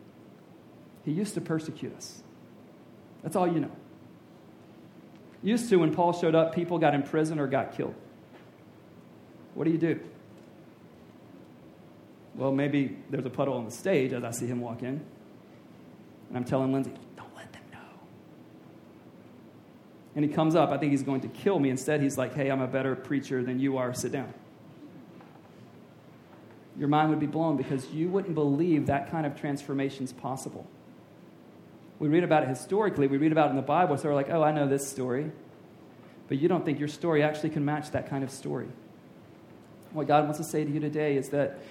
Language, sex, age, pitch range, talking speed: English, male, 40-59, 140-160 Hz, 185 wpm